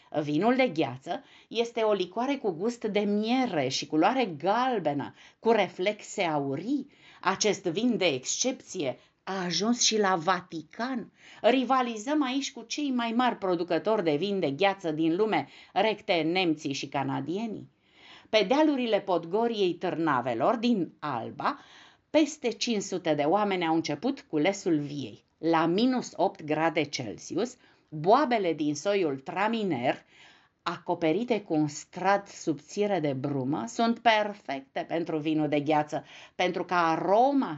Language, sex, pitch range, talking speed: Romanian, female, 160-240 Hz, 130 wpm